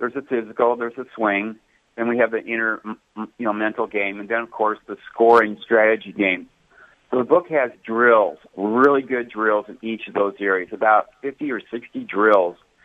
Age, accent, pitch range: 50-69, American, 100-120 Hz